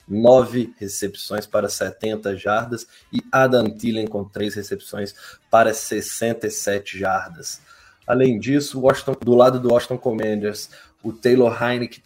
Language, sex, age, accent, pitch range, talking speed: Portuguese, male, 20-39, Brazilian, 100-120 Hz, 125 wpm